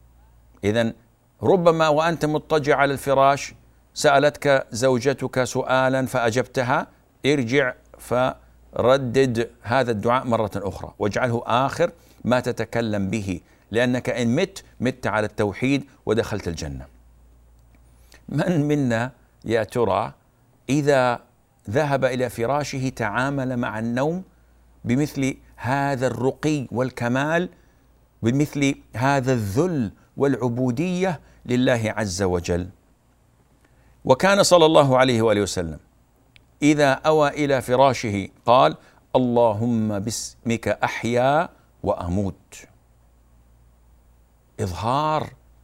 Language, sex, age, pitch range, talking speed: Arabic, male, 50-69, 105-140 Hz, 90 wpm